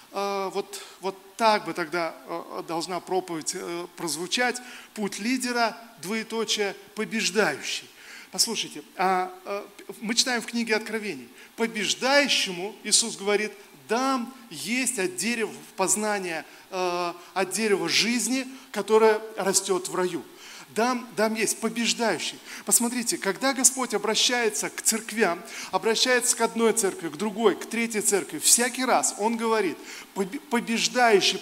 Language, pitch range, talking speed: Russian, 200-240 Hz, 105 wpm